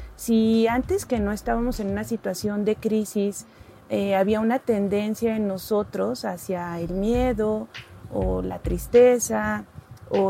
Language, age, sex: Spanish, 30-49, female